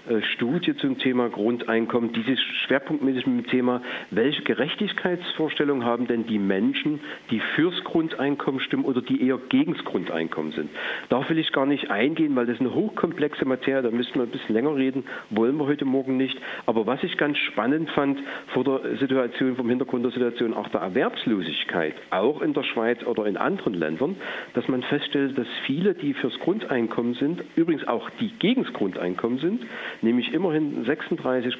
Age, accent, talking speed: 50-69, German, 170 wpm